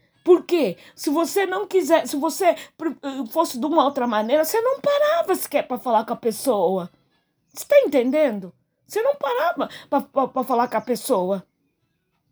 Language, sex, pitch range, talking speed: Portuguese, female, 250-345 Hz, 160 wpm